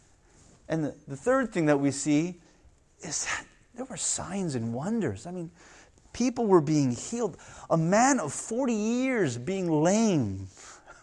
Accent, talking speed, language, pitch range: American, 145 wpm, English, 145-220 Hz